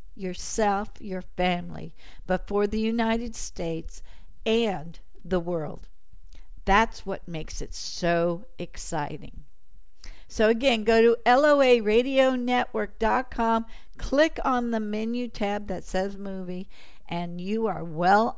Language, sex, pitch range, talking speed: English, female, 155-240 Hz, 110 wpm